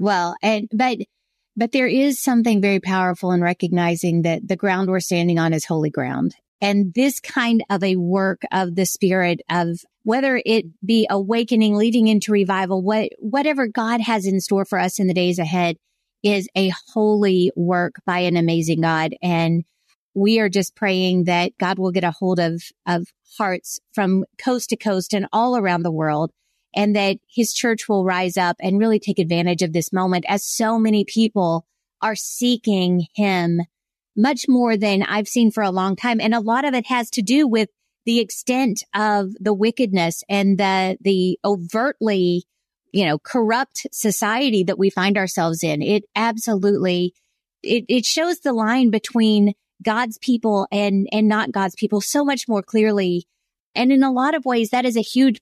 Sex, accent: female, American